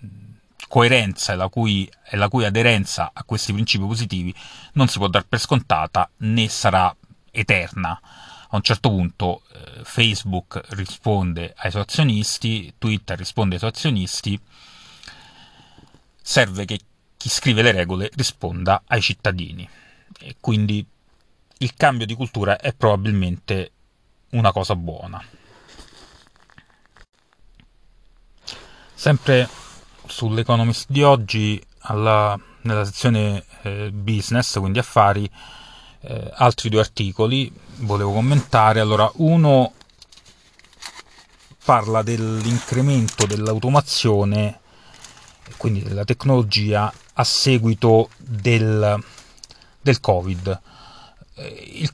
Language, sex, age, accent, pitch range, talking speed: Italian, male, 30-49, native, 100-125 Hz, 100 wpm